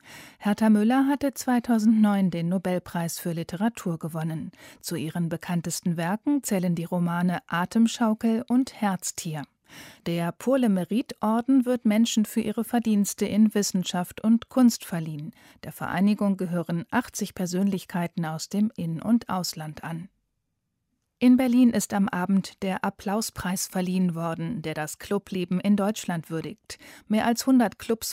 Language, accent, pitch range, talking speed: German, German, 175-225 Hz, 130 wpm